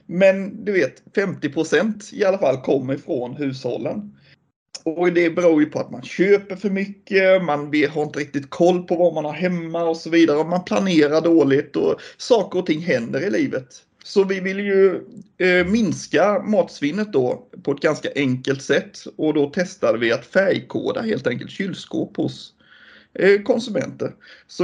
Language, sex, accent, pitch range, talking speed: Swedish, male, native, 140-190 Hz, 165 wpm